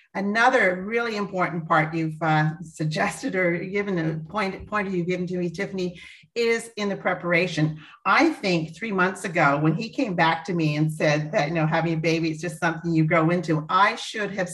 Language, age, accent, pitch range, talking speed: English, 40-59, American, 165-200 Hz, 200 wpm